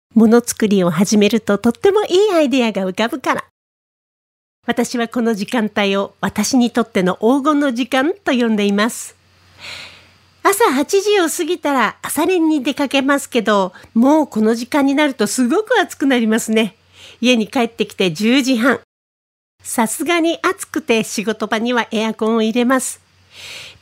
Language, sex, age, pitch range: Japanese, female, 40-59, 220-310 Hz